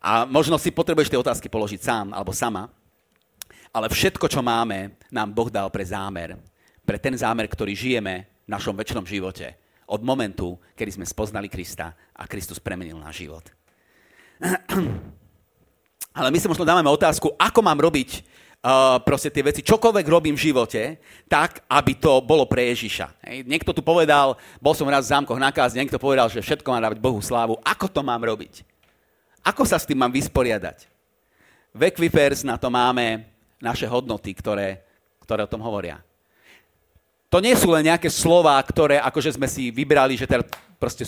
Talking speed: 170 wpm